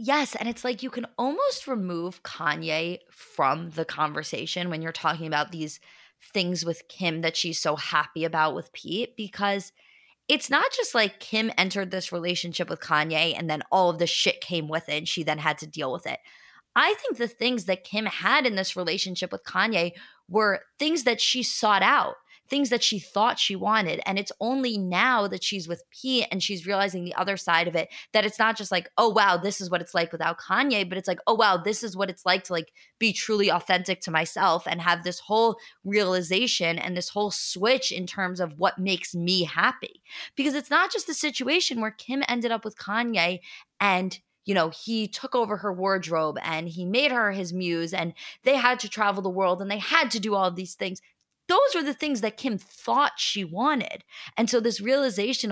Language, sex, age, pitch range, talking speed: English, female, 20-39, 175-235 Hz, 210 wpm